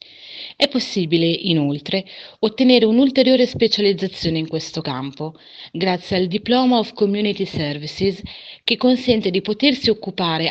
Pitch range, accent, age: 165-215 Hz, native, 30-49